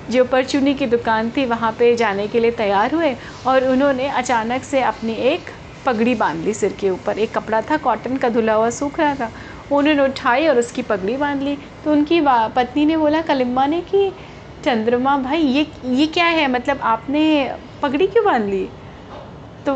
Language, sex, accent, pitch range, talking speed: Hindi, female, native, 225-280 Hz, 190 wpm